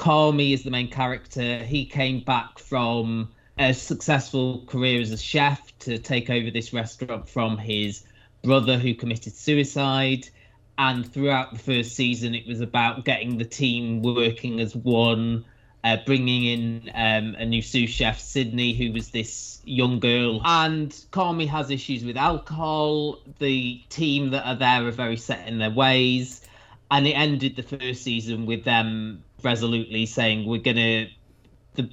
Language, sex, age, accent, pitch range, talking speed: English, male, 20-39, British, 115-135 Hz, 160 wpm